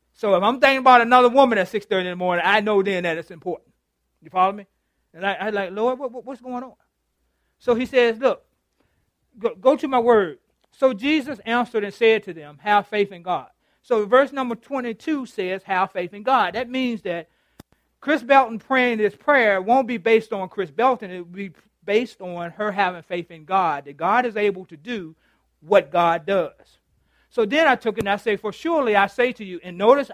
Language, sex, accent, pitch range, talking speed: English, male, American, 180-245 Hz, 210 wpm